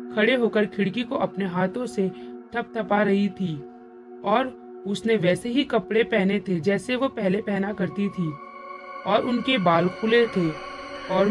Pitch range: 185-230 Hz